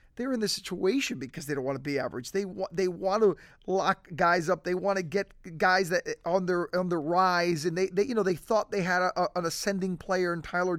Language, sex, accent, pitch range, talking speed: English, male, American, 170-205 Hz, 255 wpm